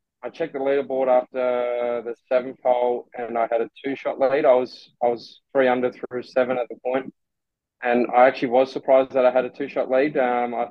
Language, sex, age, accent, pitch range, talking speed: English, male, 20-39, Australian, 120-140 Hz, 215 wpm